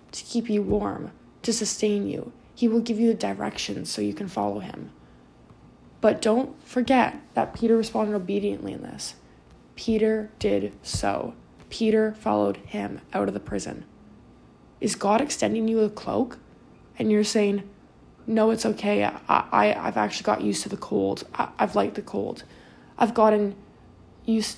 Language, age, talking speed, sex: English, 20-39, 160 wpm, female